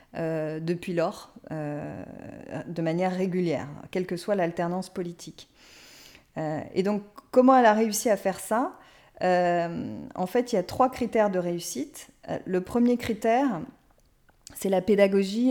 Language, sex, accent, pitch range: French, female, French, 175-225 Hz